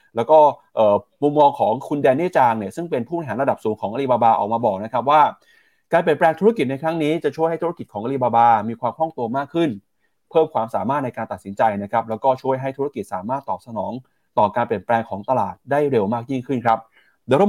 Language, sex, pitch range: Thai, male, 115-160 Hz